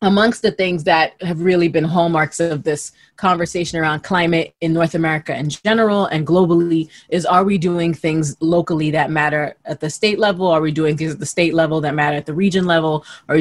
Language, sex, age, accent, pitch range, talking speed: English, female, 20-39, American, 155-180 Hz, 210 wpm